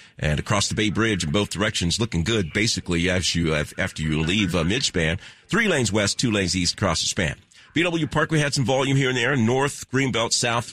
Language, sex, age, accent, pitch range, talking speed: English, male, 50-69, American, 95-130 Hz, 220 wpm